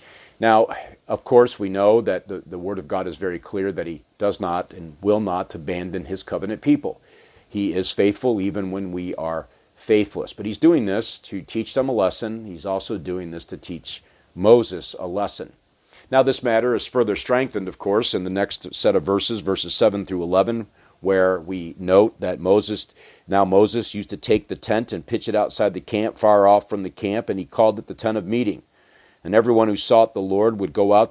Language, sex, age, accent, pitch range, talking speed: English, male, 50-69, American, 95-110 Hz, 210 wpm